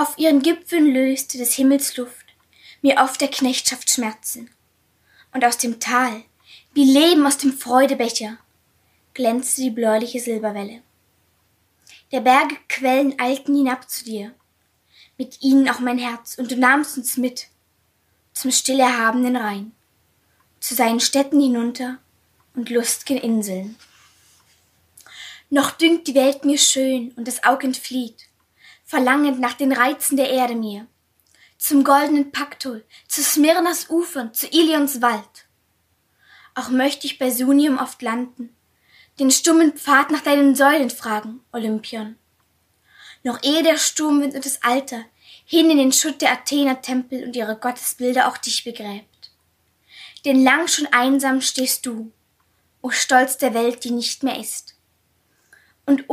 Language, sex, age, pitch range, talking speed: German, female, 20-39, 240-280 Hz, 140 wpm